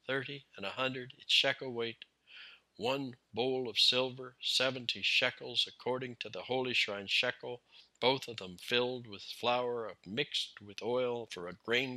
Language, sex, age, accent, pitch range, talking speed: English, male, 60-79, American, 105-130 Hz, 155 wpm